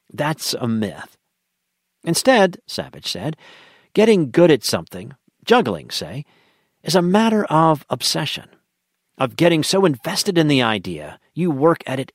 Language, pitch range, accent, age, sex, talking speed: English, 115-160 Hz, American, 50-69, male, 140 wpm